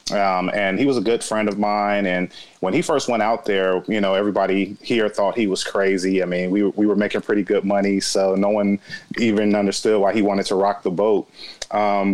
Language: English